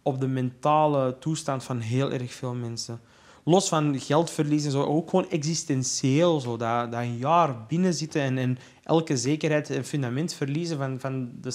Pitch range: 130-165 Hz